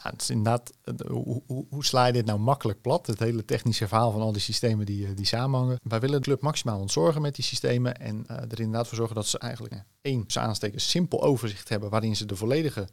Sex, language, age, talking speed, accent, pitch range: male, Dutch, 40-59, 230 wpm, Dutch, 110-135 Hz